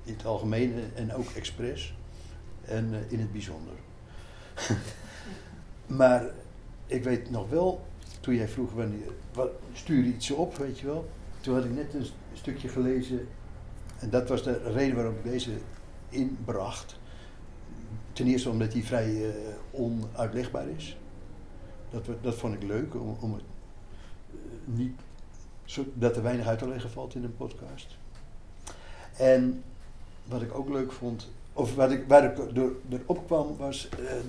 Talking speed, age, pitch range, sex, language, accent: 145 wpm, 60-79, 105-130 Hz, male, Dutch, Dutch